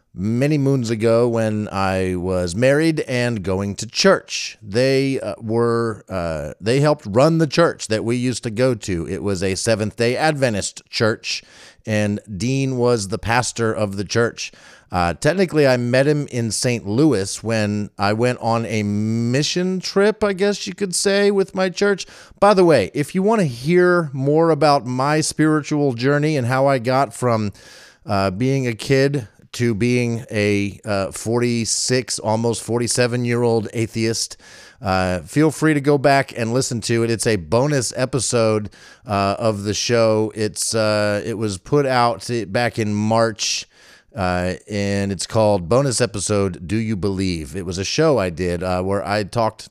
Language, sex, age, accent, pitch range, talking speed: English, male, 40-59, American, 100-135 Hz, 170 wpm